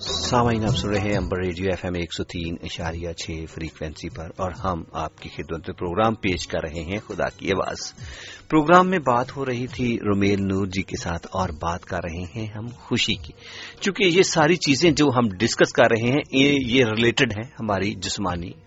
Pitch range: 95-125 Hz